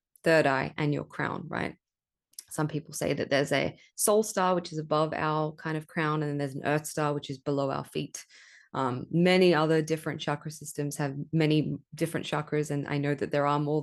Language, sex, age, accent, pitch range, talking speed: English, female, 20-39, Australian, 145-175 Hz, 215 wpm